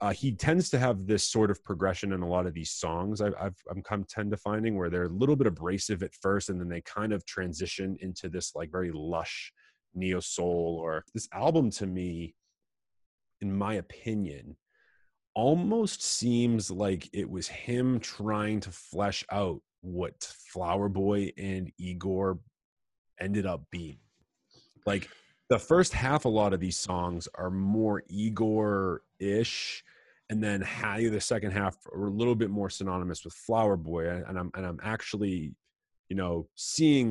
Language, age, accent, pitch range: English, 30-49, American, 90-105 Hz